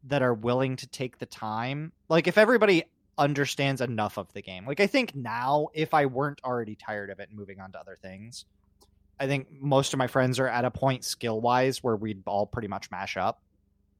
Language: English